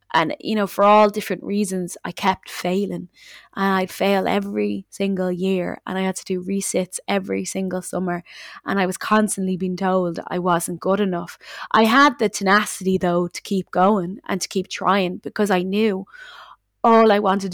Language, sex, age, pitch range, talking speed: English, female, 20-39, 185-220 Hz, 185 wpm